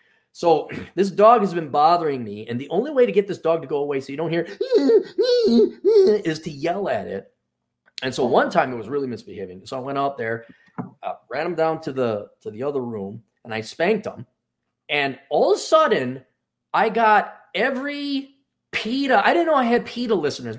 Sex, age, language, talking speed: male, 30-49, English, 205 wpm